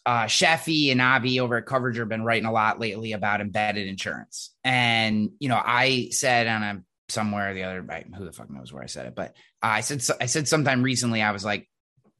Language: English